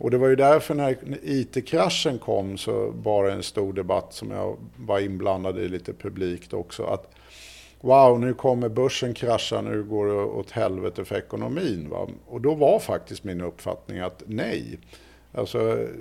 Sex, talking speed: male, 170 wpm